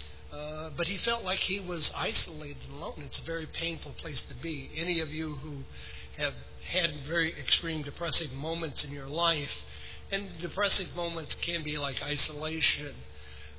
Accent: American